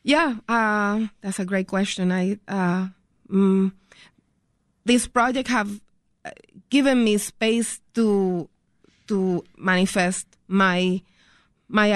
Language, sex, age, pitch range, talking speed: English, female, 20-39, 185-225 Hz, 100 wpm